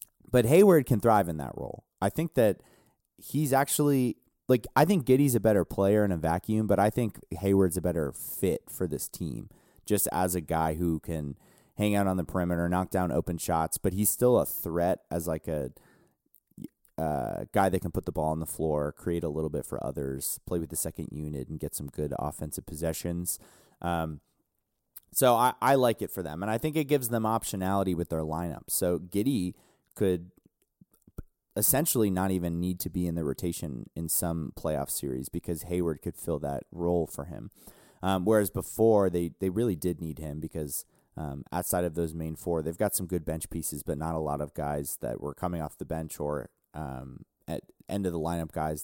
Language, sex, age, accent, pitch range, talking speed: English, male, 30-49, American, 80-105 Hz, 205 wpm